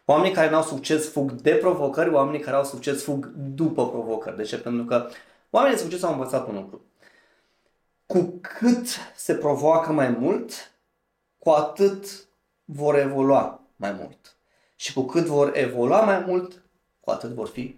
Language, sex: Romanian, male